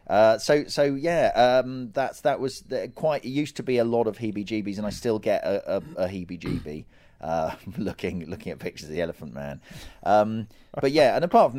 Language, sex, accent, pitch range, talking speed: English, male, British, 90-120 Hz, 210 wpm